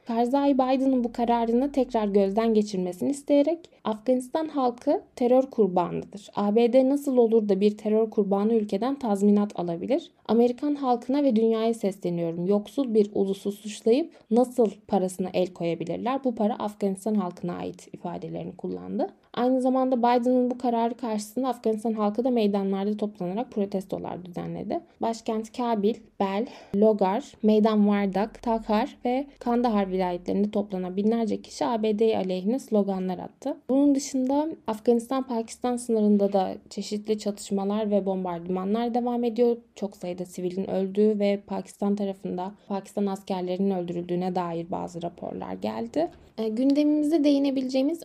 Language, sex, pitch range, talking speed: Turkish, female, 200-255 Hz, 125 wpm